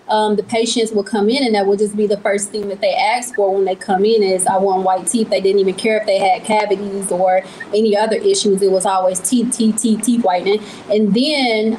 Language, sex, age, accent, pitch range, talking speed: English, female, 20-39, American, 195-230 Hz, 250 wpm